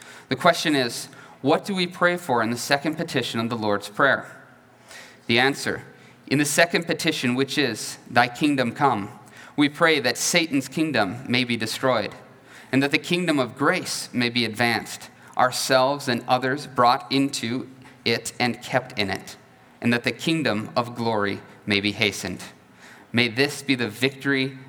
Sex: male